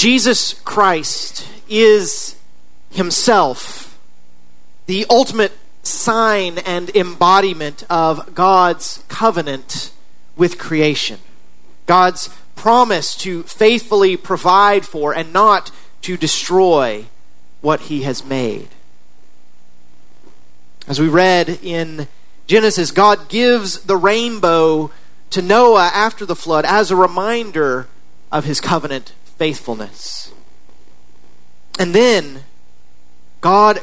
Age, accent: 40-59, American